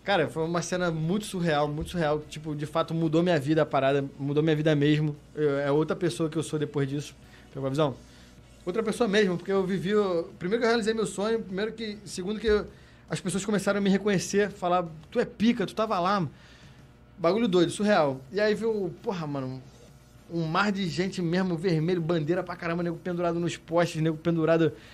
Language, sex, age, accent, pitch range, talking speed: Portuguese, male, 20-39, Brazilian, 150-180 Hz, 205 wpm